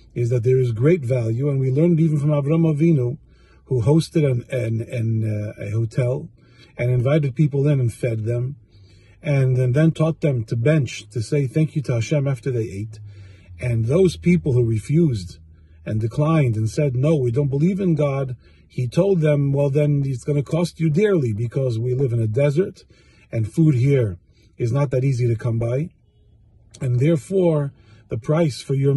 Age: 50-69